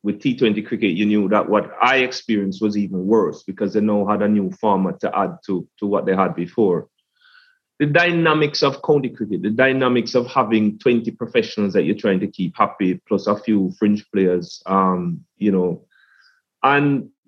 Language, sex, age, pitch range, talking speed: English, male, 30-49, 100-140 Hz, 185 wpm